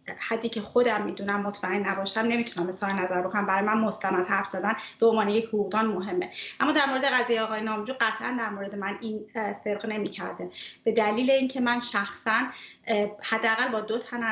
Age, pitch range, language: 30-49, 195-225 Hz, Persian